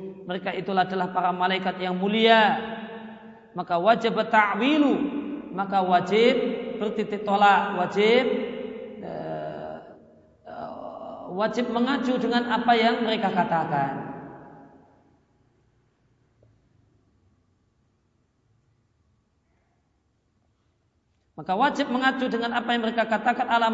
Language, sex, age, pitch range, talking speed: Indonesian, male, 40-59, 165-230 Hz, 80 wpm